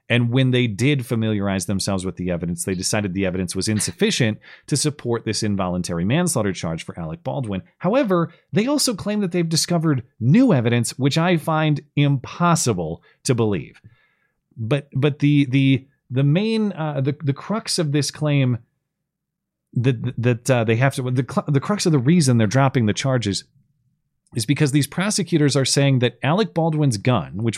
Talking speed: 170 wpm